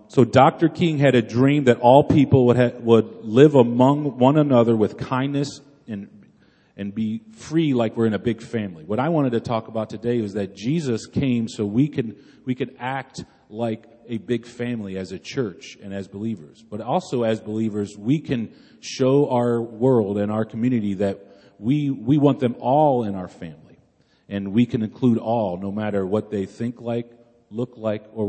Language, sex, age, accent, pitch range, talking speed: English, male, 40-59, American, 105-130 Hz, 190 wpm